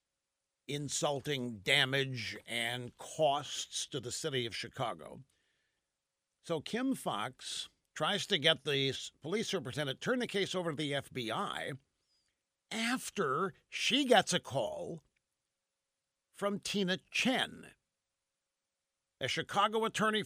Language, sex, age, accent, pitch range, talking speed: English, male, 50-69, American, 140-200 Hz, 105 wpm